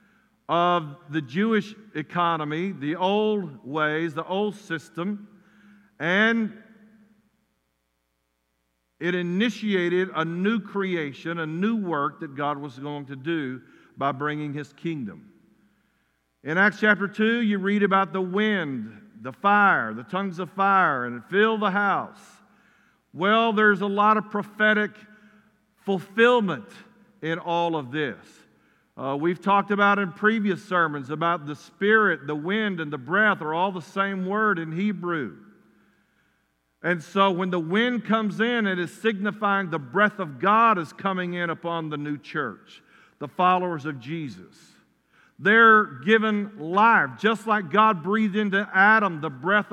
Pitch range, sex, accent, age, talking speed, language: 165-210 Hz, male, American, 50-69, 140 wpm, English